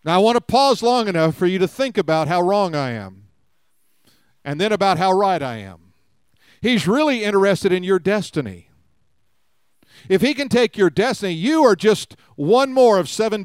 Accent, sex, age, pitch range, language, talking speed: American, male, 50-69, 170-230 Hz, English, 185 wpm